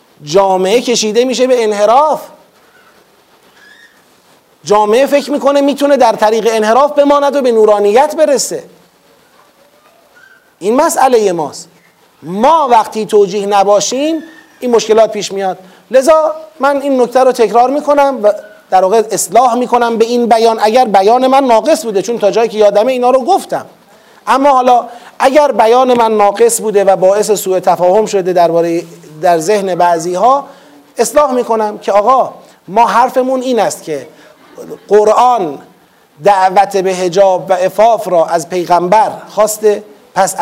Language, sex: Persian, male